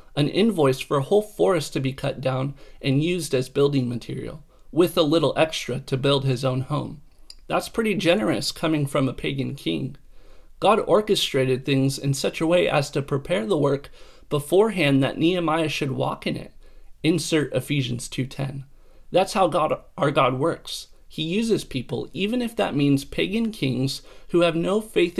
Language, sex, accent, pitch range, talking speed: English, male, American, 135-175 Hz, 175 wpm